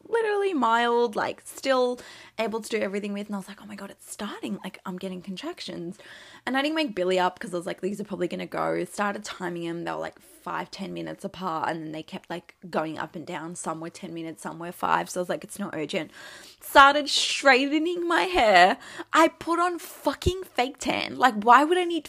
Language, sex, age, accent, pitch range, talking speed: English, female, 20-39, Australian, 185-260 Hz, 230 wpm